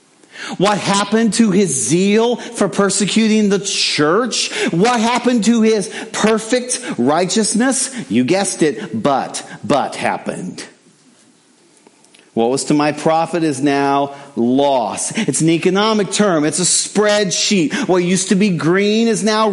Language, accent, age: English, American, 40-59